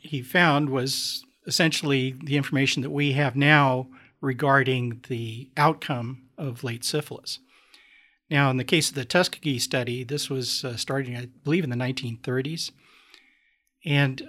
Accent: American